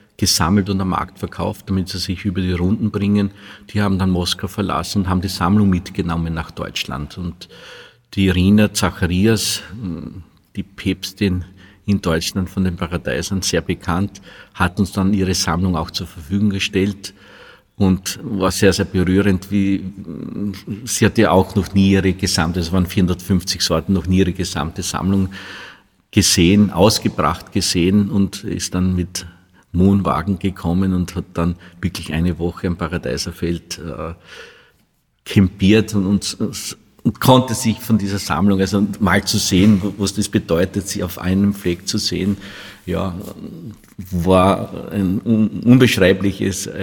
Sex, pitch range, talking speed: male, 90-100 Hz, 145 wpm